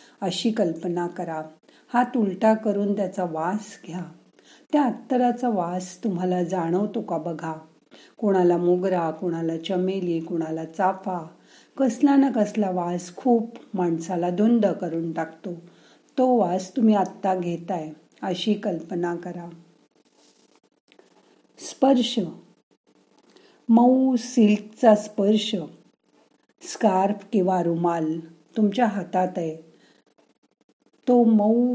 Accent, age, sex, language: native, 50-69, female, Marathi